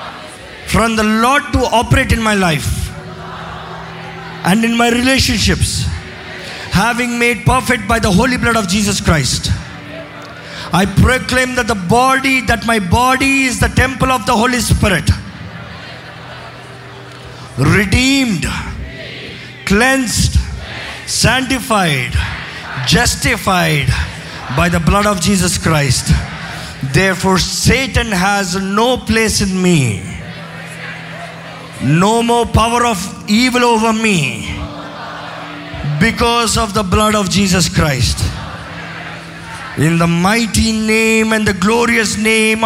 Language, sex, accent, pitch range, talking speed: Telugu, male, native, 145-225 Hz, 105 wpm